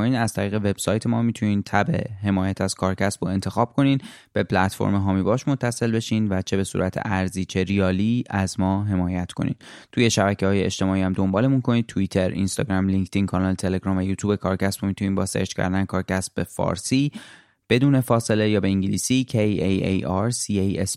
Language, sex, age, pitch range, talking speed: Persian, male, 20-39, 95-110 Hz, 185 wpm